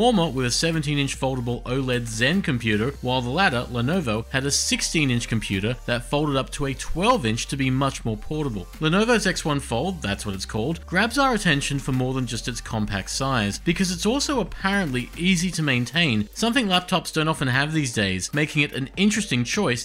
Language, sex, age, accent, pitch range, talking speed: English, male, 40-59, Australian, 115-165 Hz, 185 wpm